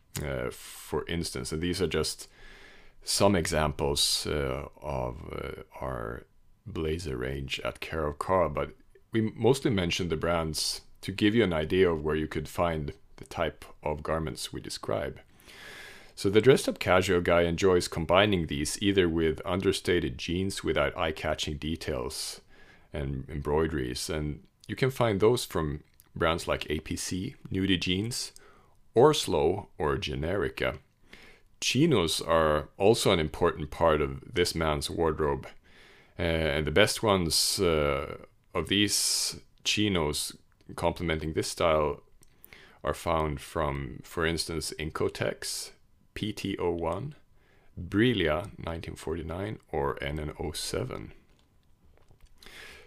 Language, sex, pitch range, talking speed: English, male, 75-95 Hz, 120 wpm